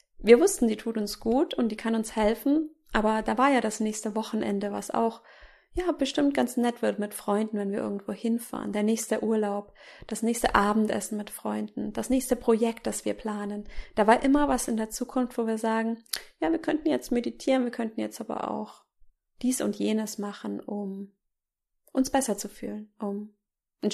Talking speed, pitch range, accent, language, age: 190 wpm, 205-245 Hz, German, German, 30-49